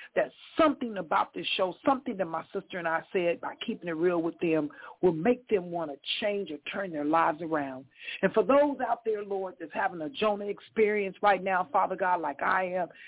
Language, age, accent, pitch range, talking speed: English, 50-69, American, 170-225 Hz, 215 wpm